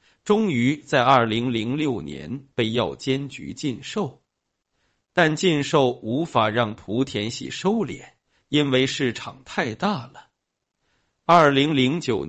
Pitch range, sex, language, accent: 115-140 Hz, male, Chinese, native